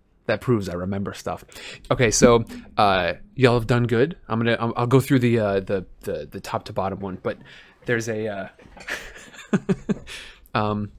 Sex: male